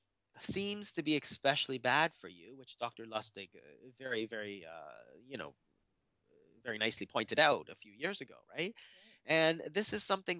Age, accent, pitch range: 30-49, American, 120-165 Hz